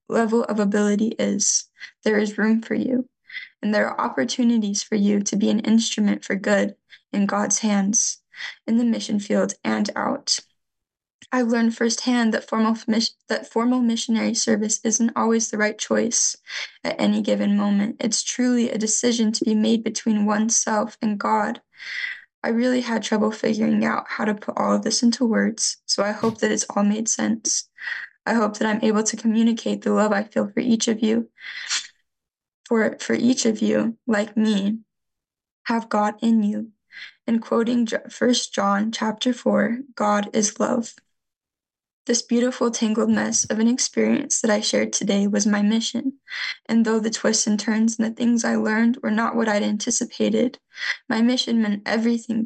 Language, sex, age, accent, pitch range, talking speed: English, female, 10-29, American, 215-235 Hz, 170 wpm